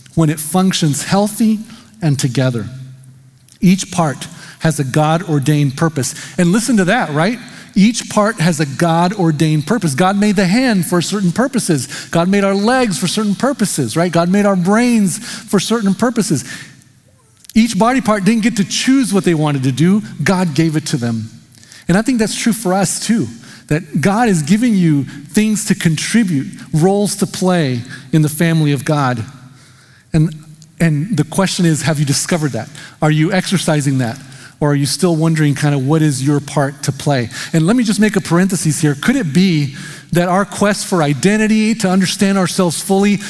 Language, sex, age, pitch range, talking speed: English, male, 40-59, 150-205 Hz, 185 wpm